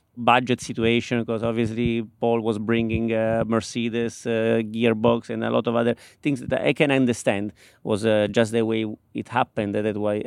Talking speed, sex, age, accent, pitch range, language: 175 wpm, male, 30-49, Italian, 115-130 Hz, English